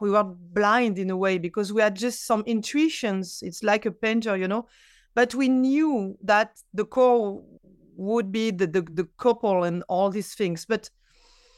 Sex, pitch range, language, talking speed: female, 210-260 Hz, English, 180 wpm